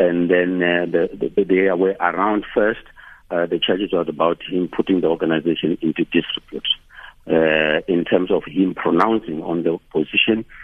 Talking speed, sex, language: 165 wpm, male, English